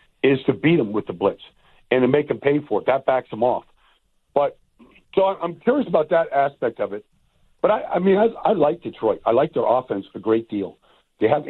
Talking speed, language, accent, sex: 230 wpm, English, American, male